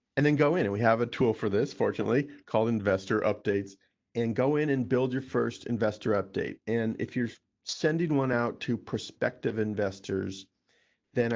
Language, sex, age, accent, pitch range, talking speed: English, male, 40-59, American, 105-125 Hz, 180 wpm